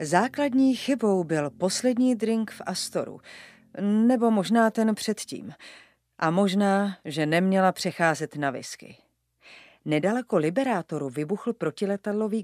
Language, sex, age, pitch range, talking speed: Czech, female, 40-59, 160-220 Hz, 105 wpm